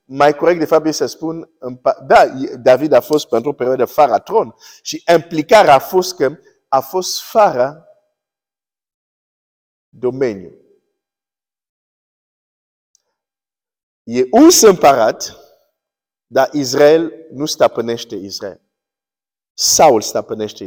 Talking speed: 105 wpm